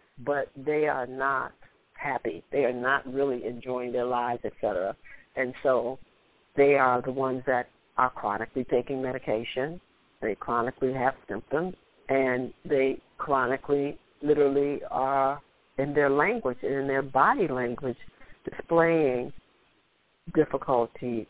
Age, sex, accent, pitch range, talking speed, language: 50-69, female, American, 125-155 Hz, 125 wpm, English